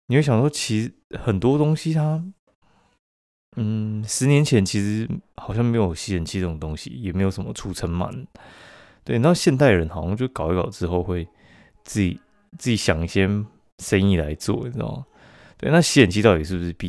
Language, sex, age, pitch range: Chinese, male, 20-39, 90-115 Hz